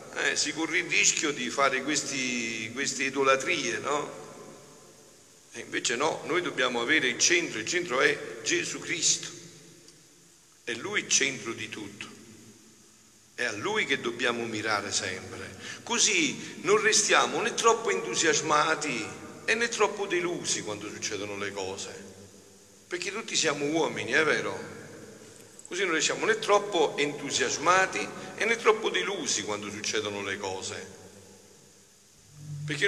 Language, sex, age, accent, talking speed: Italian, male, 50-69, native, 130 wpm